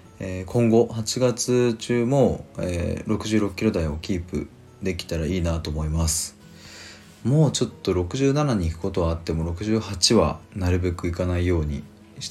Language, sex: Japanese, male